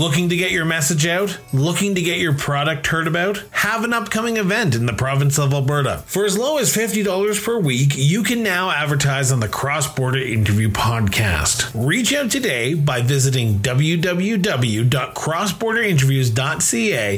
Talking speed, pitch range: 155 wpm, 125-180 Hz